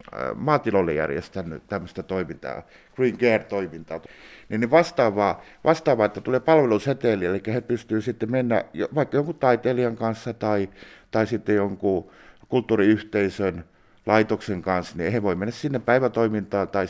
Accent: native